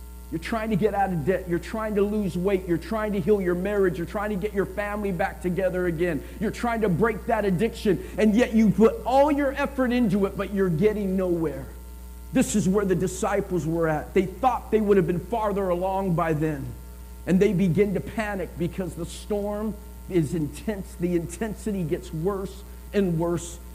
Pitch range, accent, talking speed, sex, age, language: 150-200 Hz, American, 200 wpm, male, 50-69, English